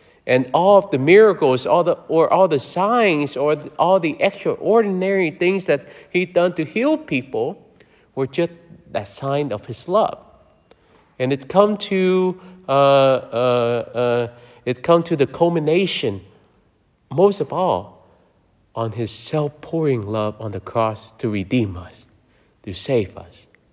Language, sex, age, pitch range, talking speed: English, male, 50-69, 110-150 Hz, 145 wpm